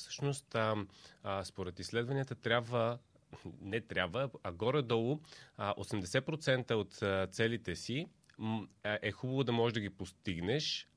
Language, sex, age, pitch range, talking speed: Bulgarian, male, 30-49, 100-130 Hz, 120 wpm